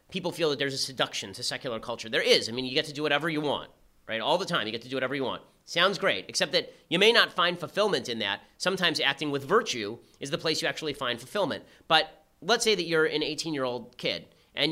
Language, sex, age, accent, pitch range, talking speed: English, male, 30-49, American, 140-175 Hz, 255 wpm